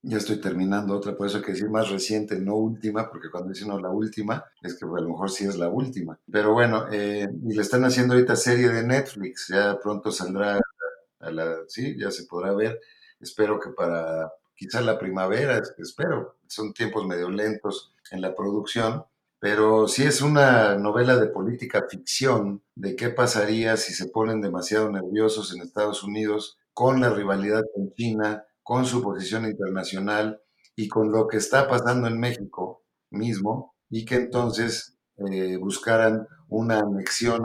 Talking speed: 175 wpm